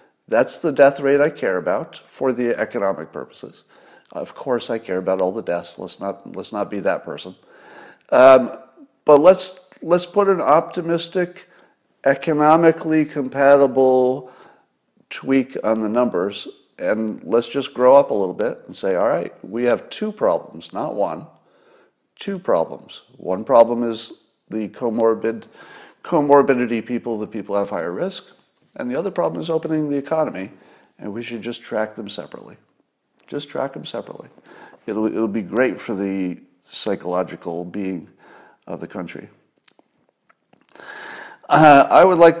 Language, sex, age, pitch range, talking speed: English, male, 50-69, 105-145 Hz, 150 wpm